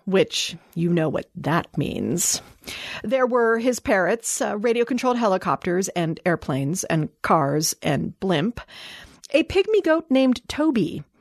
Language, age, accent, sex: English, 40-59, American, female